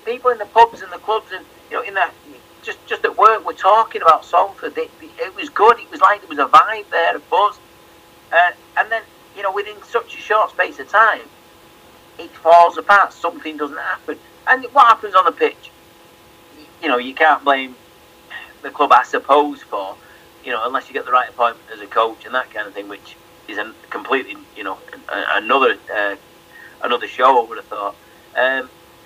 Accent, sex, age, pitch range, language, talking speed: British, male, 40-59, 140-210 Hz, English, 205 wpm